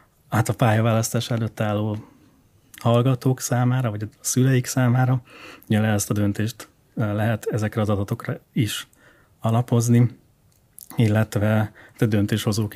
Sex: male